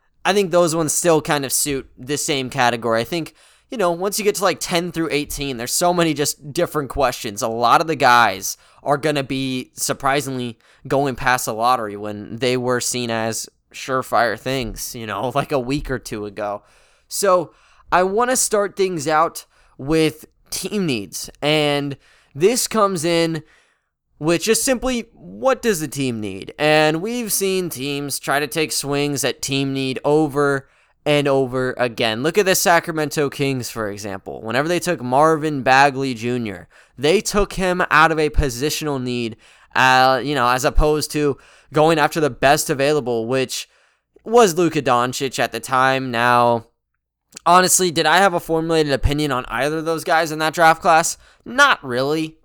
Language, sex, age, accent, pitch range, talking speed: English, male, 20-39, American, 130-165 Hz, 175 wpm